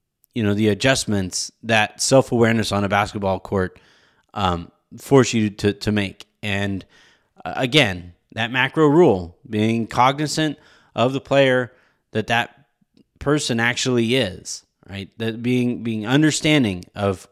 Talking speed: 130 wpm